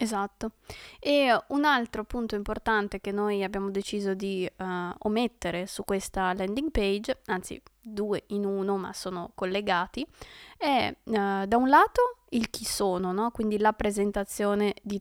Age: 20-39